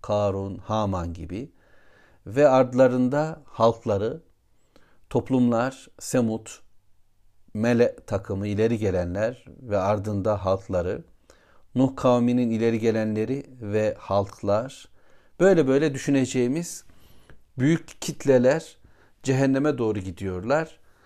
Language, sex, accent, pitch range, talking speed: Turkish, male, native, 100-130 Hz, 85 wpm